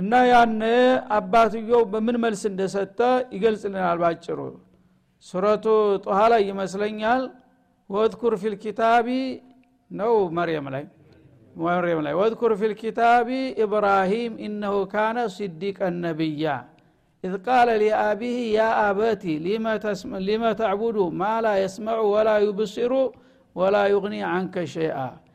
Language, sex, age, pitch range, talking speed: Amharic, male, 60-79, 190-225 Hz, 110 wpm